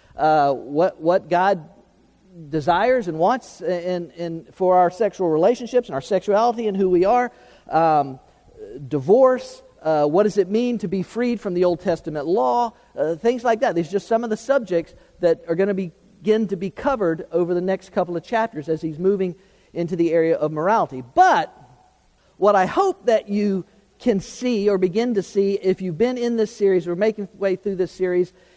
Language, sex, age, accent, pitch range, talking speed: English, male, 50-69, American, 175-235 Hz, 195 wpm